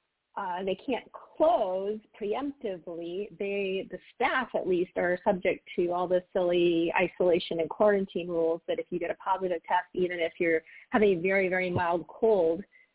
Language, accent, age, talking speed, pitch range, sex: English, American, 30-49, 165 wpm, 180-235 Hz, female